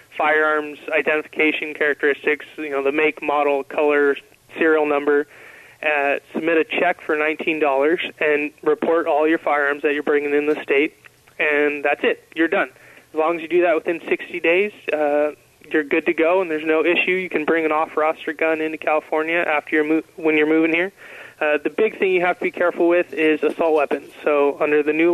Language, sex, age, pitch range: English, male, 20-39, 150-175 Hz